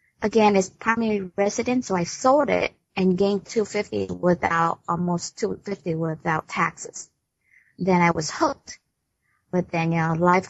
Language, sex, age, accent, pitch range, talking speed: English, female, 30-49, American, 175-200 Hz, 145 wpm